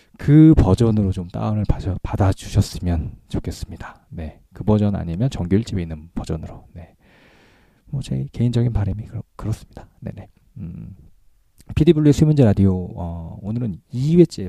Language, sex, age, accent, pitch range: Korean, male, 40-59, native, 90-135 Hz